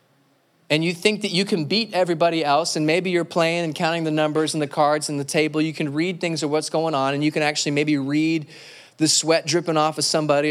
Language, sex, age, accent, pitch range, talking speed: English, male, 30-49, American, 140-175 Hz, 245 wpm